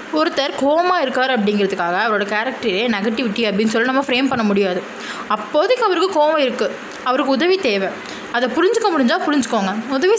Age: 20-39